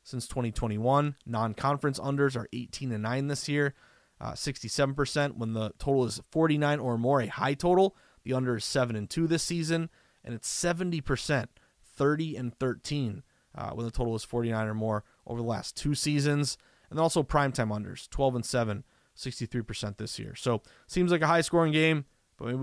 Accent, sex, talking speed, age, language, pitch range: American, male, 180 wpm, 20-39, English, 115-155 Hz